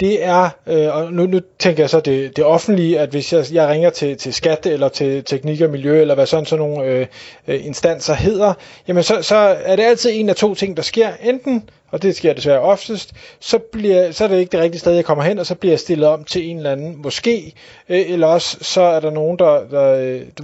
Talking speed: 230 wpm